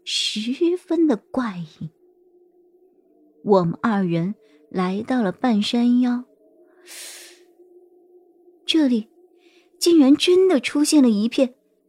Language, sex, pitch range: Chinese, male, 215-320 Hz